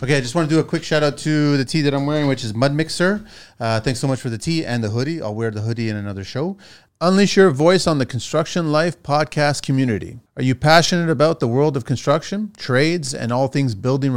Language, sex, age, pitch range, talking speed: English, male, 30-49, 125-155 Hz, 250 wpm